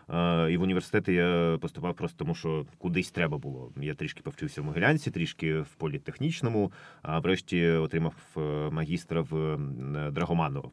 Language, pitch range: Ukrainian, 85-105 Hz